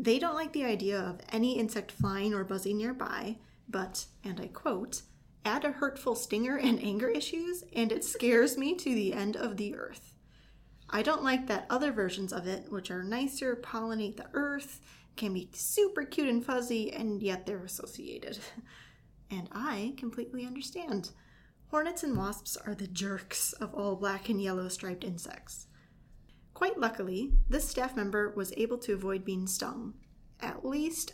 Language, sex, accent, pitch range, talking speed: English, female, American, 195-255 Hz, 170 wpm